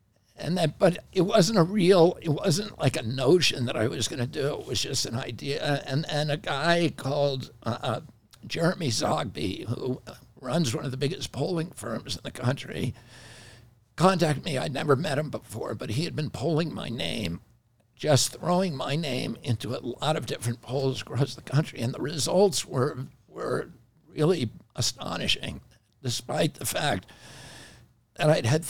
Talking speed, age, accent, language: 175 wpm, 60-79, American, English